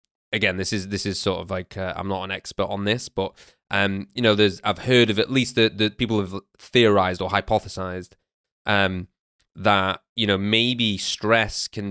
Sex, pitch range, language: male, 95-105 Hz, English